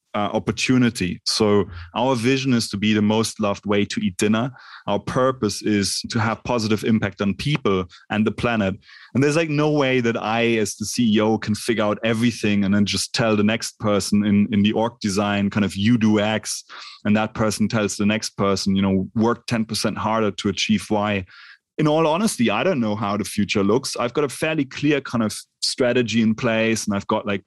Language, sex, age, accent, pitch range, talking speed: English, male, 30-49, German, 105-120 Hz, 210 wpm